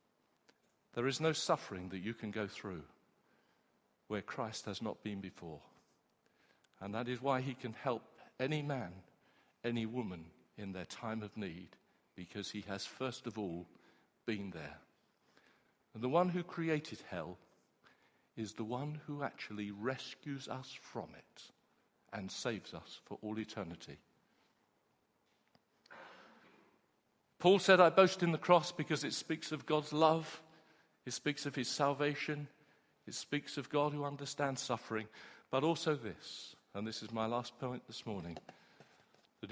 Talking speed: 145 wpm